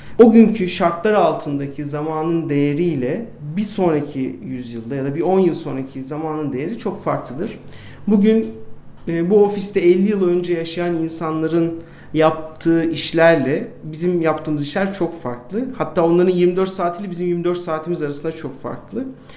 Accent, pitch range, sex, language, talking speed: native, 150-195 Hz, male, Turkish, 135 wpm